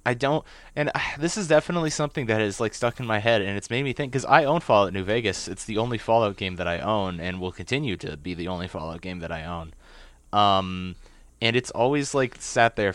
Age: 30-49